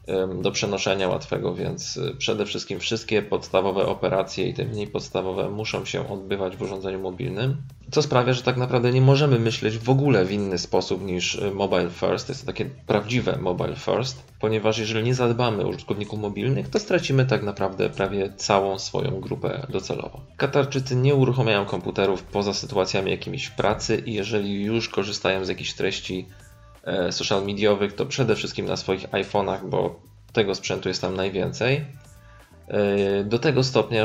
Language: Polish